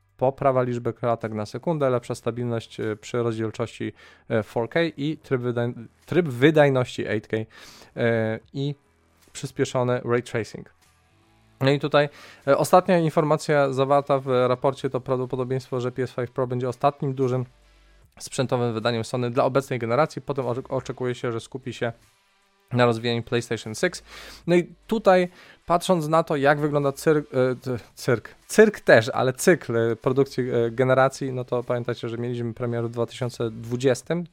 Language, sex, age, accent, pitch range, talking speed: Polish, male, 20-39, native, 120-145 Hz, 135 wpm